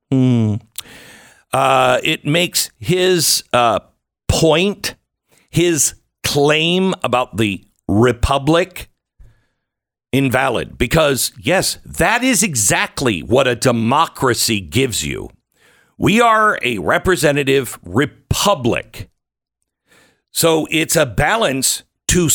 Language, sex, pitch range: English, male, 130-180 Hz